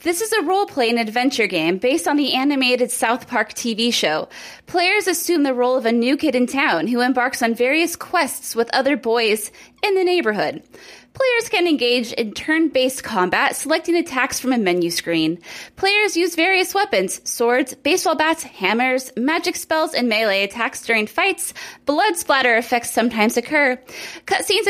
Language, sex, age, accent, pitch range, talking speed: English, female, 20-39, American, 235-325 Hz, 165 wpm